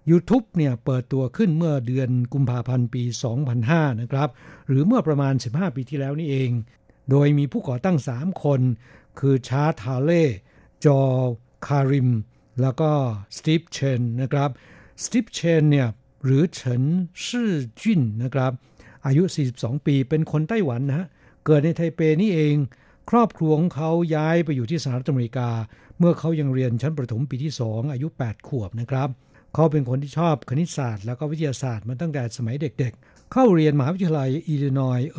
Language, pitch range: Thai, 125-155 Hz